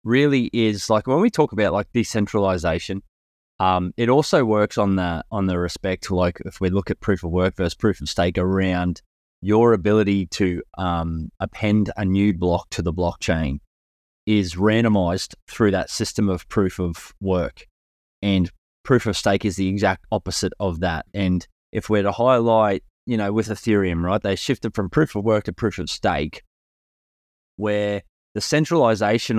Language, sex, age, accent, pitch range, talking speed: English, male, 20-39, Australian, 90-105 Hz, 175 wpm